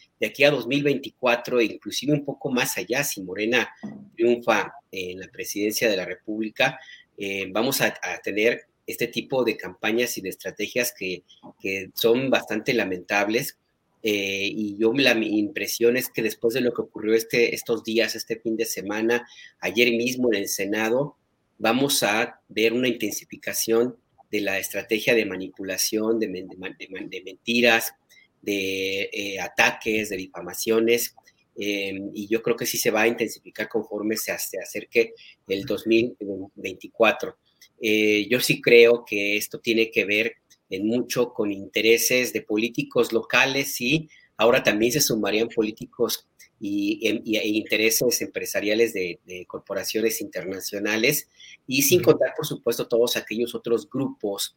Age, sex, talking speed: 40-59, male, 150 wpm